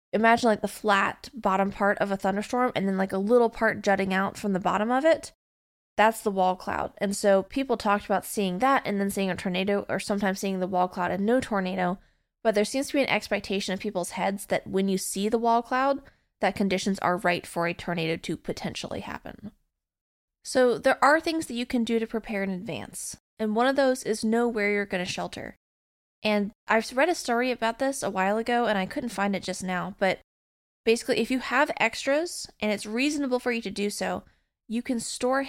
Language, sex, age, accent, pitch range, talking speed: English, female, 20-39, American, 195-240 Hz, 220 wpm